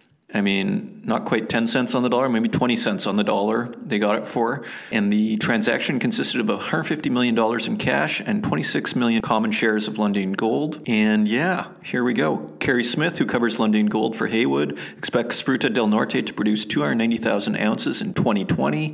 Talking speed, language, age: 180 wpm, English, 40-59